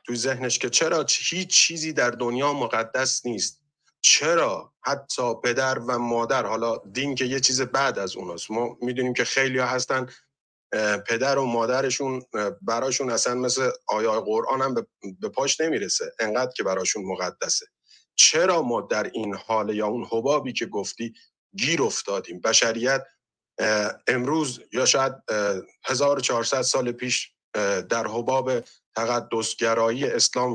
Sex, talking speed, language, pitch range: male, 135 wpm, Persian, 115-135 Hz